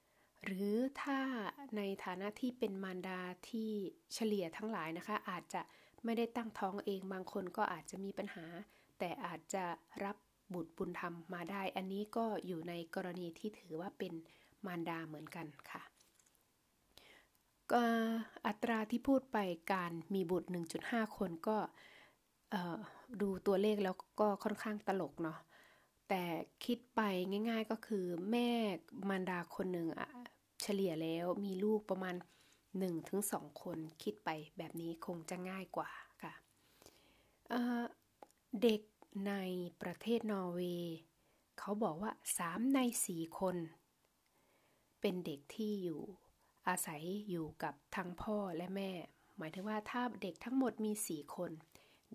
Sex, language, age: female, Thai, 20-39